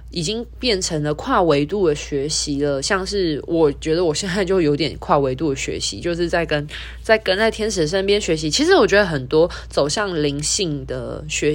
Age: 20-39